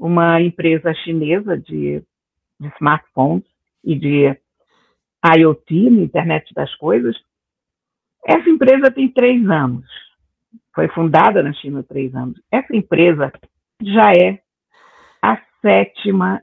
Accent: Brazilian